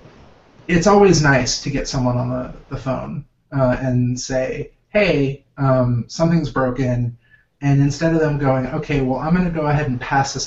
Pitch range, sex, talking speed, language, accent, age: 120-135 Hz, male, 185 wpm, English, American, 30-49